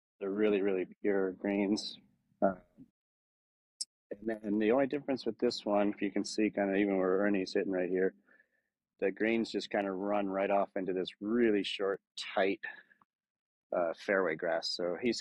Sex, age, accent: male, 30-49, American